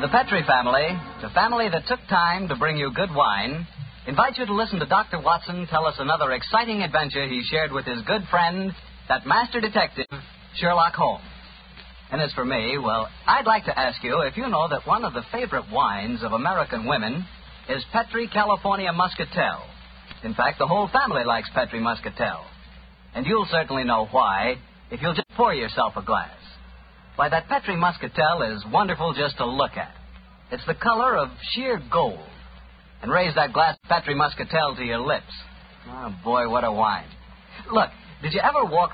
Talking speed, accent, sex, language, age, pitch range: 180 wpm, American, male, English, 50-69, 110-180 Hz